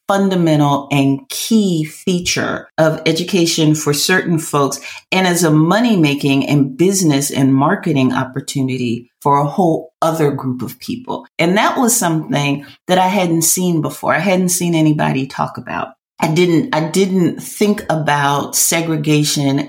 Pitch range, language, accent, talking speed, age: 145-185 Hz, English, American, 145 wpm, 40-59